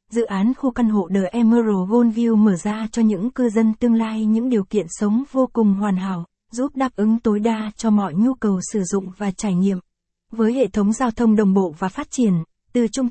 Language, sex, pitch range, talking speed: Vietnamese, female, 200-235 Hz, 230 wpm